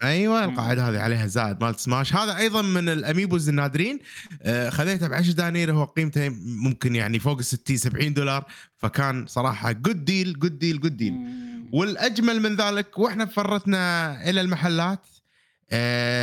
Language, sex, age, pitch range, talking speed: Arabic, male, 20-39, 130-195 Hz, 150 wpm